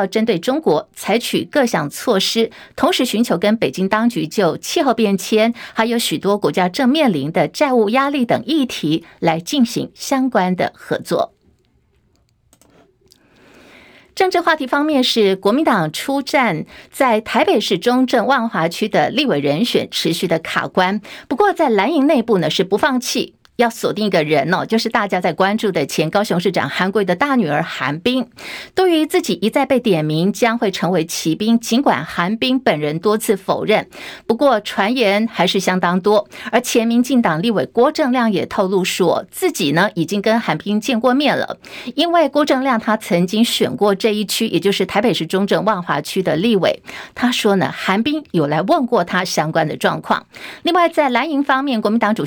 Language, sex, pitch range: Chinese, female, 190-260 Hz